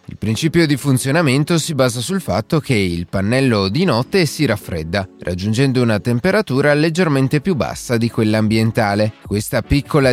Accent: native